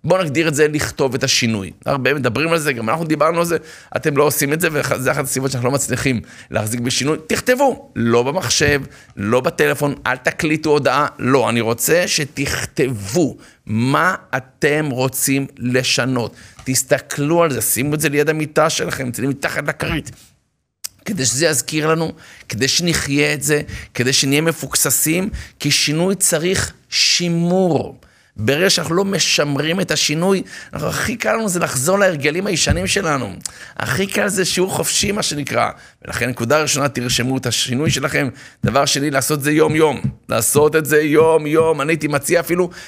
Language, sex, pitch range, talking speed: Hebrew, male, 130-165 Hz, 160 wpm